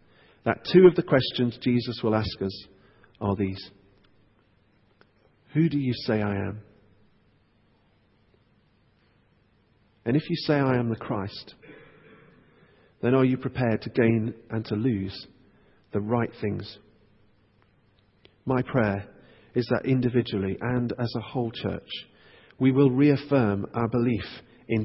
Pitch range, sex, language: 100-125 Hz, male, English